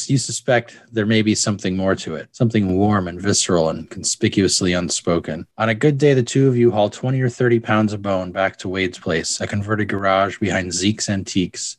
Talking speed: 210 wpm